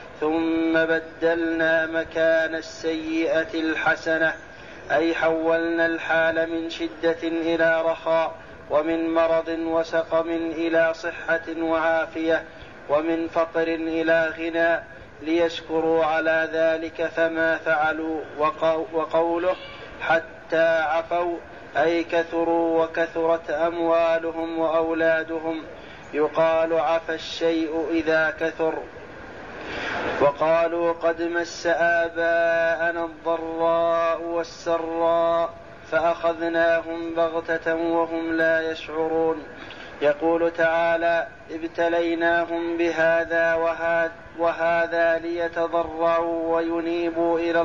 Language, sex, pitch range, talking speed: Arabic, male, 160-165 Hz, 75 wpm